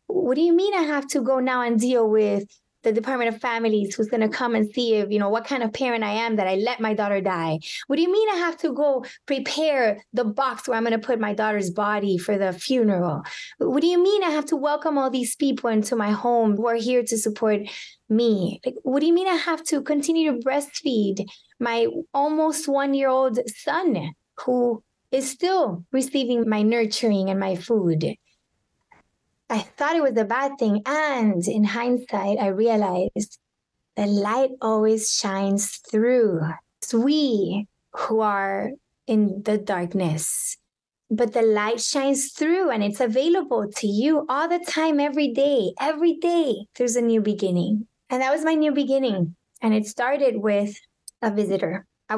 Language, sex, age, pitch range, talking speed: English, female, 20-39, 210-275 Hz, 185 wpm